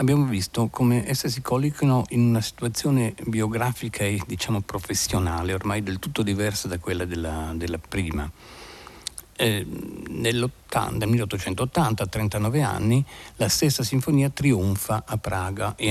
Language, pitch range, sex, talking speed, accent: Italian, 95-120 Hz, male, 130 wpm, native